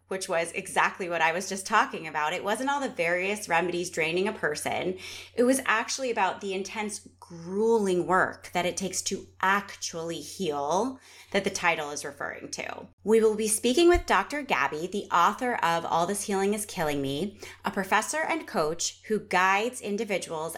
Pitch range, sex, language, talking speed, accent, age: 175-235 Hz, female, English, 180 wpm, American, 30-49